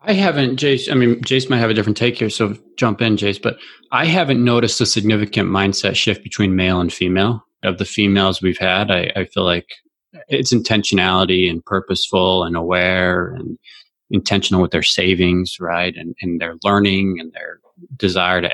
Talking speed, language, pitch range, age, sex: 185 wpm, English, 90-110 Hz, 20-39, male